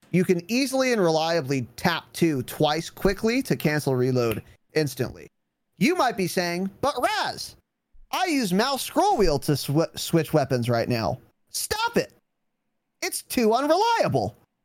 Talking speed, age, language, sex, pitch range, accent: 140 wpm, 30-49, English, male, 130-195 Hz, American